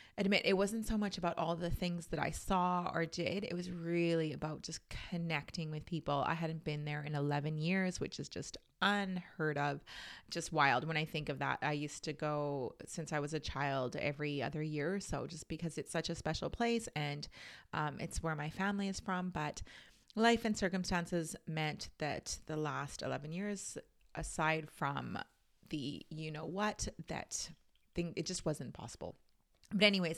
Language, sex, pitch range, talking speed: English, female, 155-200 Hz, 185 wpm